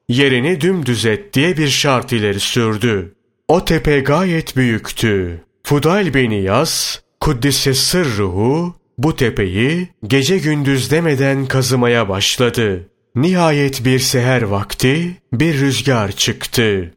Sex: male